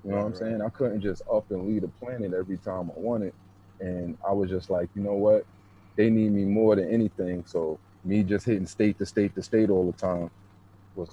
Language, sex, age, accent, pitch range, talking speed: English, male, 30-49, American, 95-115 Hz, 235 wpm